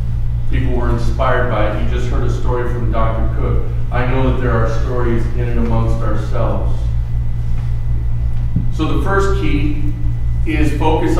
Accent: American